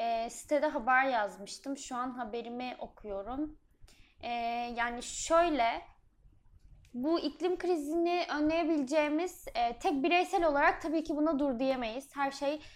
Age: 10-29